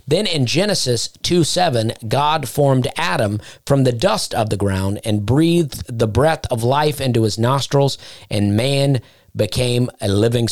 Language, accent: English, American